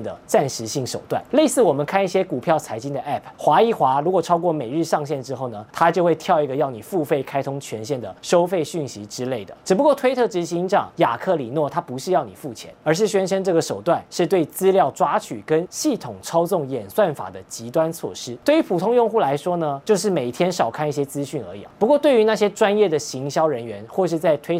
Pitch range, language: 135-190 Hz, Chinese